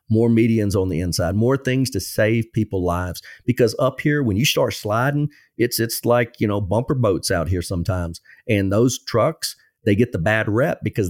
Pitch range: 105-130 Hz